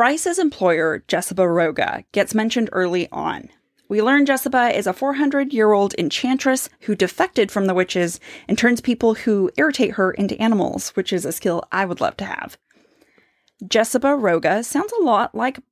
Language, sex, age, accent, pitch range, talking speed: English, female, 20-39, American, 190-265 Hz, 165 wpm